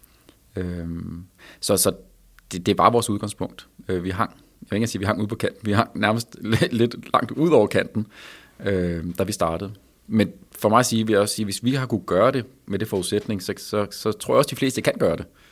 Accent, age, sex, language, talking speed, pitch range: native, 30-49, male, Danish, 235 wpm, 90-110 Hz